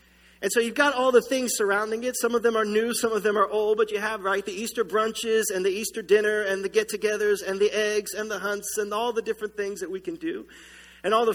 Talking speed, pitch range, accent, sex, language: 270 wpm, 190-240 Hz, American, male, English